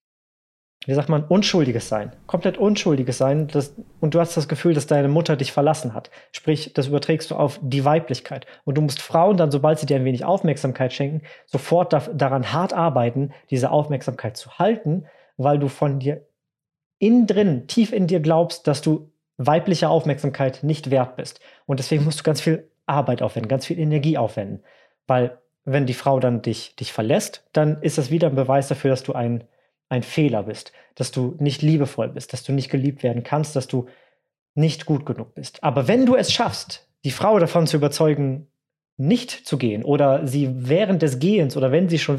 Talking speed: 195 wpm